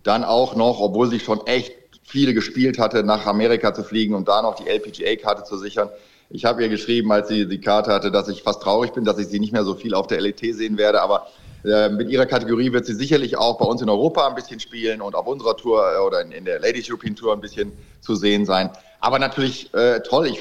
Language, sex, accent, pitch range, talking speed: German, male, German, 110-140 Hz, 250 wpm